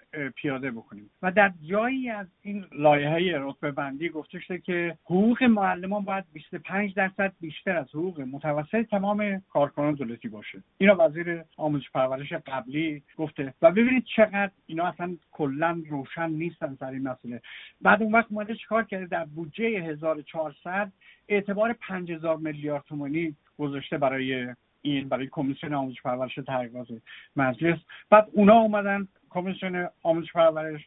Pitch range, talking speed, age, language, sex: 140-190 Hz, 140 wpm, 50-69, Persian, male